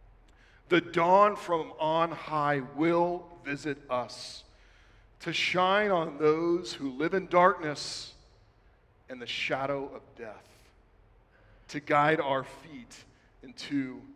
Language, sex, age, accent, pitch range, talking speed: English, male, 40-59, American, 135-215 Hz, 110 wpm